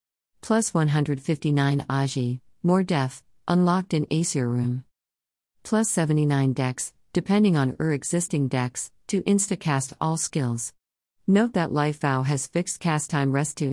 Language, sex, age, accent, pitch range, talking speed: English, female, 50-69, American, 130-170 Hz, 140 wpm